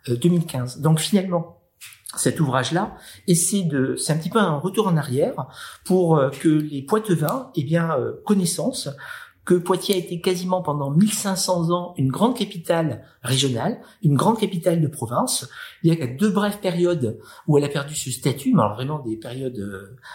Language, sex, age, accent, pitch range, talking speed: French, male, 50-69, French, 135-175 Hz, 165 wpm